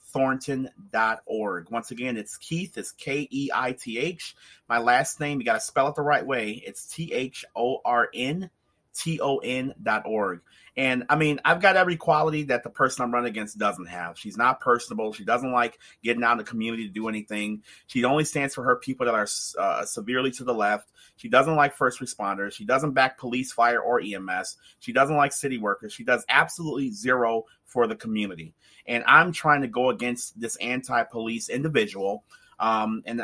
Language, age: English, 30-49